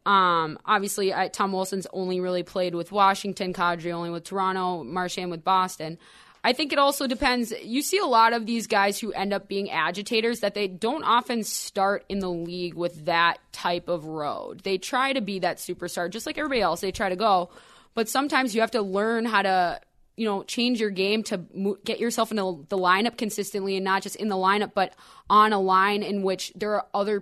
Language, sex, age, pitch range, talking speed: English, female, 20-39, 185-215 Hz, 215 wpm